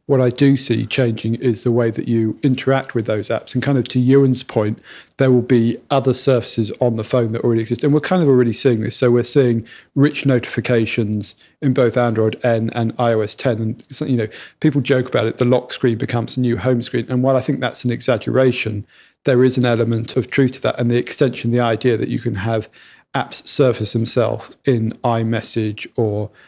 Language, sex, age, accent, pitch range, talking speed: English, male, 40-59, British, 115-130 Hz, 215 wpm